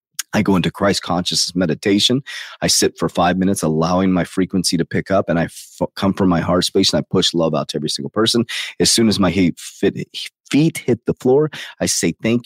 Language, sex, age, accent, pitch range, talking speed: English, male, 30-49, American, 85-105 Hz, 225 wpm